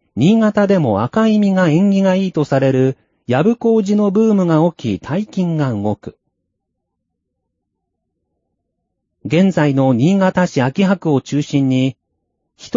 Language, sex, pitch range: Japanese, male, 110-190 Hz